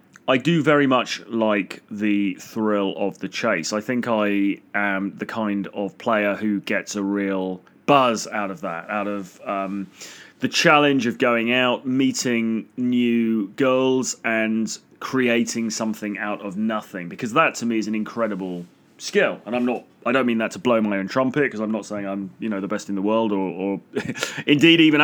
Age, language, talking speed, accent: 30-49, English, 195 wpm, British